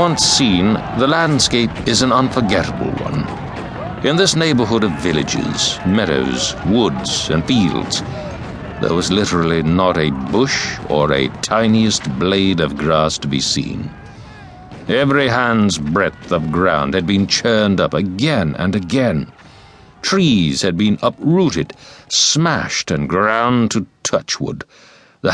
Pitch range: 85-115 Hz